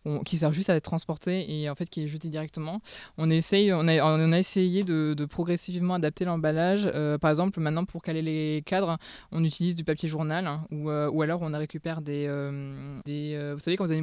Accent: French